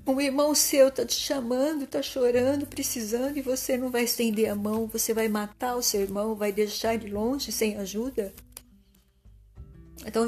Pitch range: 195-245 Hz